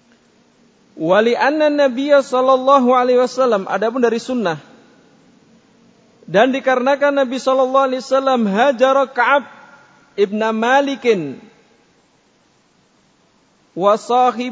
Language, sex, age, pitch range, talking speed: Indonesian, male, 40-59, 145-245 Hz, 85 wpm